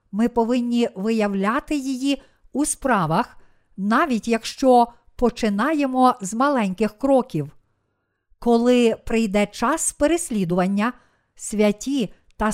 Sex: female